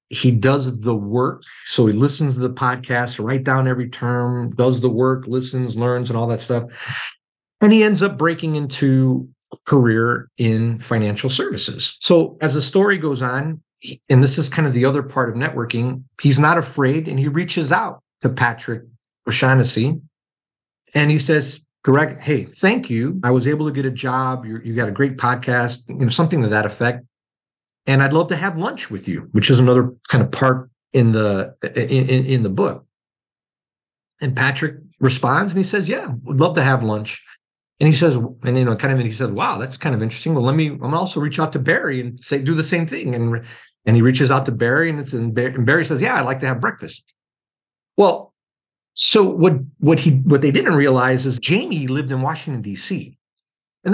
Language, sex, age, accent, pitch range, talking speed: English, male, 50-69, American, 120-150 Hz, 205 wpm